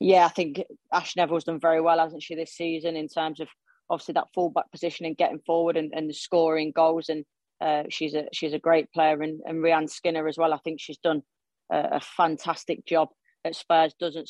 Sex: female